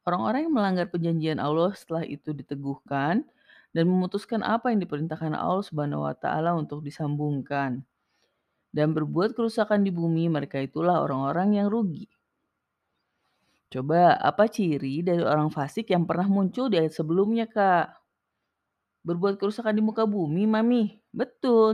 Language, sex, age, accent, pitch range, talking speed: Indonesian, female, 30-49, native, 150-215 Hz, 135 wpm